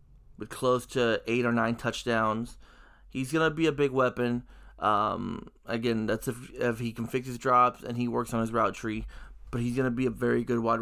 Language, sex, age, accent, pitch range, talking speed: English, male, 20-39, American, 115-135 Hz, 220 wpm